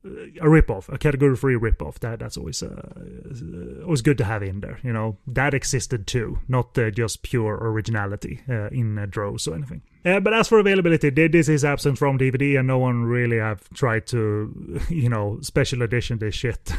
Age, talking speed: 30-49, 195 wpm